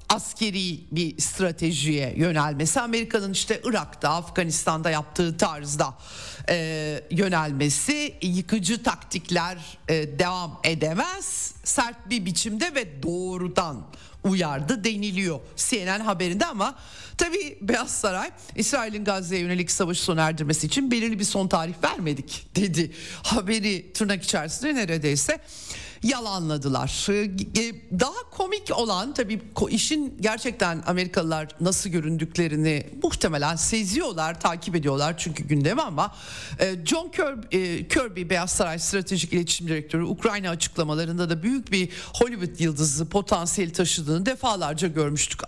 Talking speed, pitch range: 110 wpm, 165-230 Hz